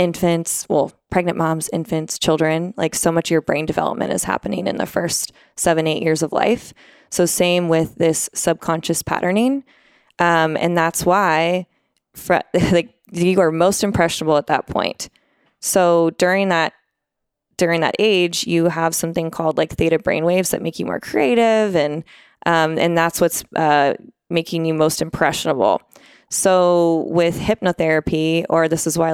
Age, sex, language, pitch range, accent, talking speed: 20-39, female, English, 160-180 Hz, American, 160 wpm